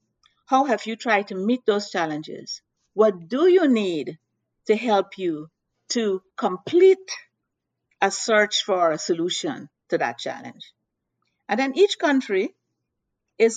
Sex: female